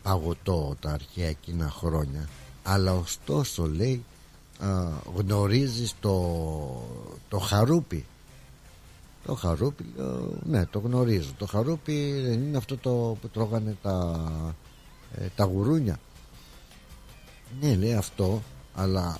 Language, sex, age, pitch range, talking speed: Greek, male, 60-79, 90-130 Hz, 110 wpm